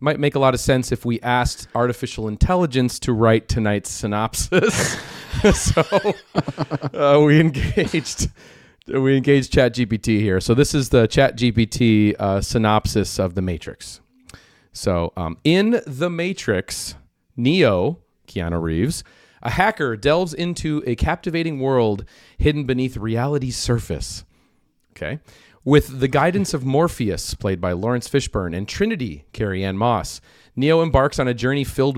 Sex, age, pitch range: male, 30-49, 110-145 Hz